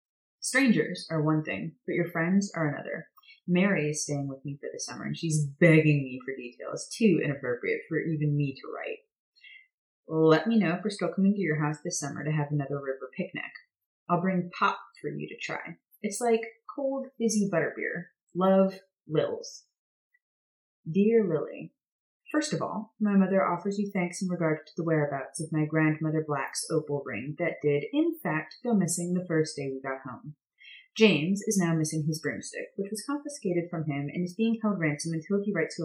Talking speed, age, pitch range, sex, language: 190 wpm, 30-49, 155-225 Hz, female, English